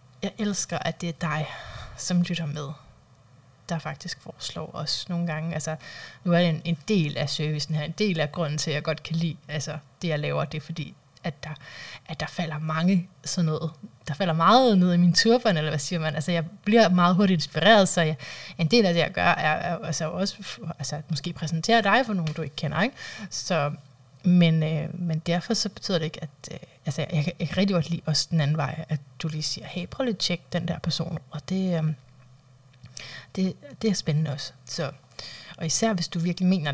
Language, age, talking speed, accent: Danish, 20-39, 225 wpm, native